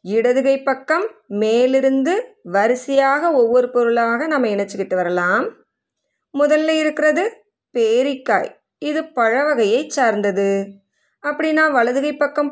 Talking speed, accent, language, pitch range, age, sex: 85 wpm, native, Tamil, 225-295 Hz, 20-39, female